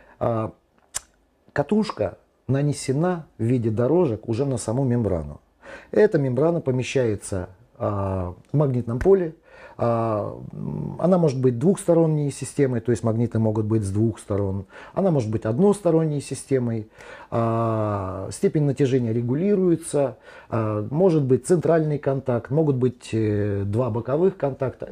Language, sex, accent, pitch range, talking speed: Russian, male, native, 100-135 Hz, 110 wpm